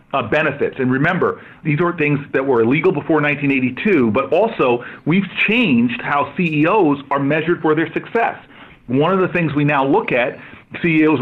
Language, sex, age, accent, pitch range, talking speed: English, male, 40-59, American, 135-170 Hz, 170 wpm